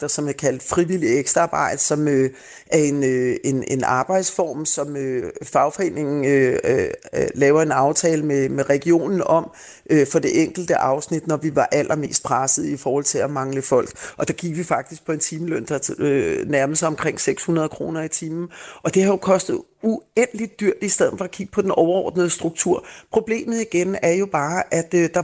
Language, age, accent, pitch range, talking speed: Danish, 30-49, native, 160-210 Hz, 195 wpm